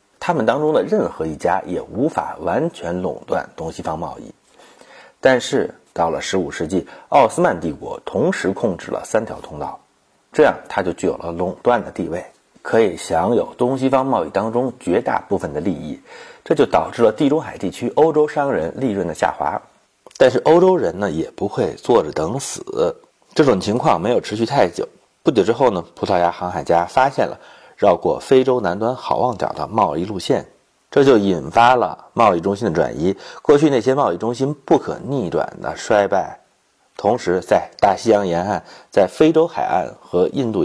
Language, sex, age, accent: Chinese, male, 30-49, native